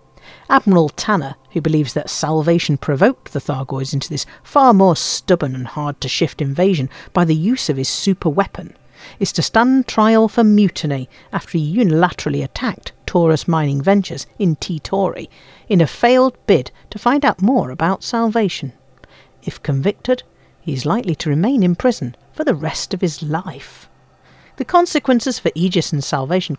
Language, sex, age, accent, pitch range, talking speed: English, female, 50-69, British, 150-225 Hz, 155 wpm